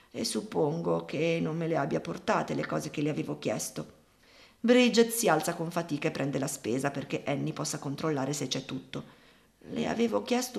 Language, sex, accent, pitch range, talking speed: Italian, female, native, 145-185 Hz, 185 wpm